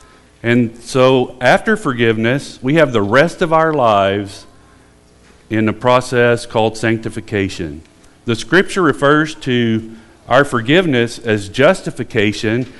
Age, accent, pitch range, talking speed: 50-69, American, 100-145 Hz, 115 wpm